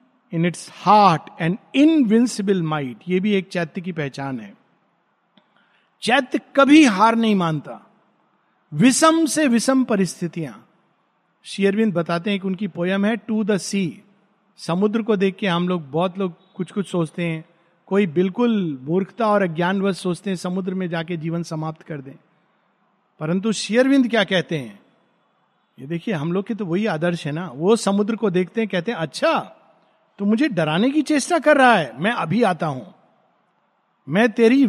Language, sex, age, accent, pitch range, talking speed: Hindi, male, 50-69, native, 175-240 Hz, 165 wpm